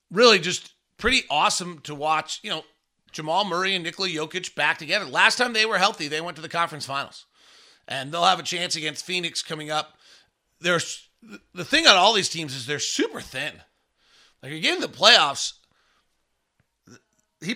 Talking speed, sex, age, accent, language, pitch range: 180 wpm, male, 40-59, American, English, 150-190 Hz